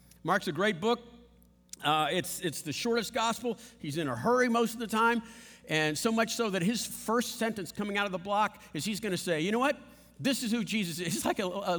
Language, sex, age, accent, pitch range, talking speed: English, male, 50-69, American, 155-225 Hz, 245 wpm